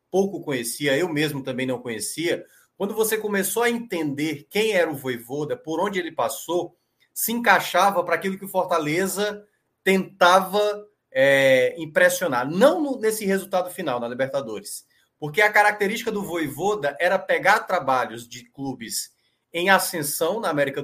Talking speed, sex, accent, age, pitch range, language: 140 wpm, male, Brazilian, 20-39, 140-200 Hz, Portuguese